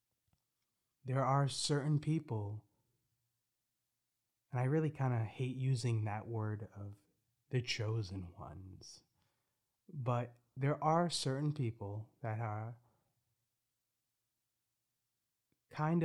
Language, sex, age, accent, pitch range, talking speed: English, male, 30-49, American, 110-130 Hz, 95 wpm